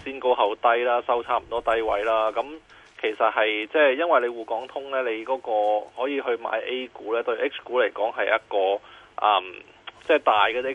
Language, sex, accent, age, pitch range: Chinese, male, native, 20-39, 115-140 Hz